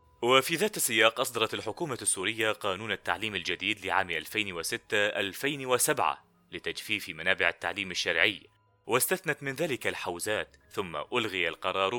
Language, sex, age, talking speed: Arabic, male, 30-49, 110 wpm